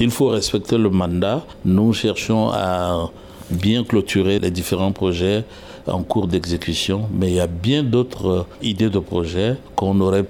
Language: French